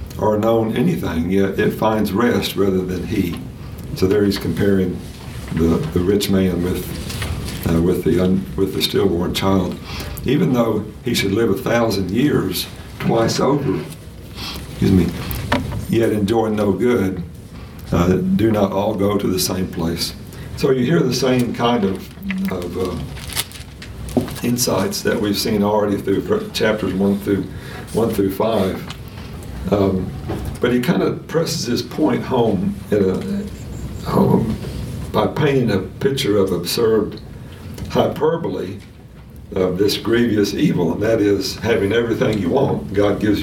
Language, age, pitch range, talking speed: English, 60-79, 95-110 Hz, 145 wpm